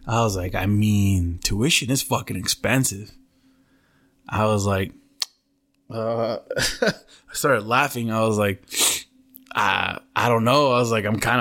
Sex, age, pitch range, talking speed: male, 20-39, 110-130 Hz, 145 wpm